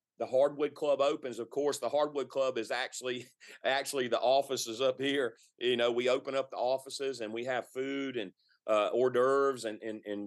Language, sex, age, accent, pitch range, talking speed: English, male, 30-49, American, 120-150 Hz, 200 wpm